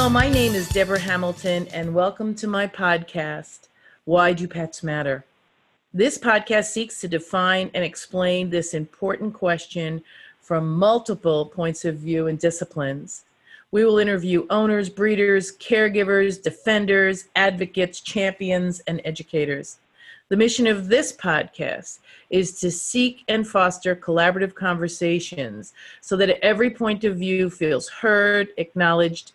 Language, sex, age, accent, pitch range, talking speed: English, female, 40-59, American, 165-195 Hz, 130 wpm